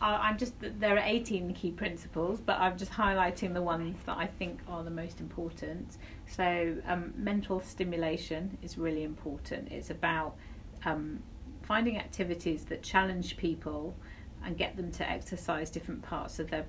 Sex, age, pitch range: female, 30-49, 160-185 Hz